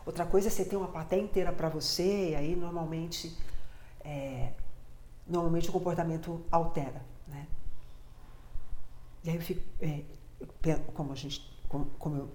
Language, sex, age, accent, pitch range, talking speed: Portuguese, female, 50-69, Brazilian, 145-235 Hz, 140 wpm